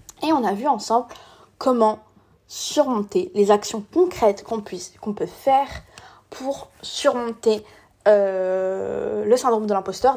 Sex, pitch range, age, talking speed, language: female, 200-240 Hz, 20-39, 130 wpm, French